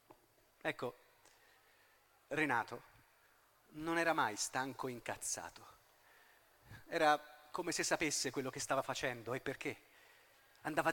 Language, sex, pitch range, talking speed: Italian, male, 140-180 Hz, 100 wpm